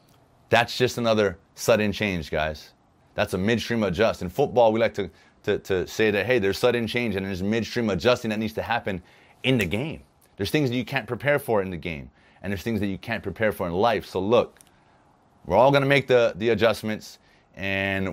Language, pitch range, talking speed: English, 95-120 Hz, 215 wpm